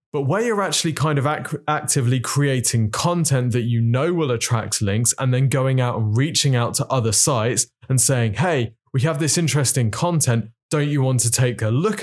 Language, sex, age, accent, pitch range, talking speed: English, male, 20-39, British, 120-145 Hz, 205 wpm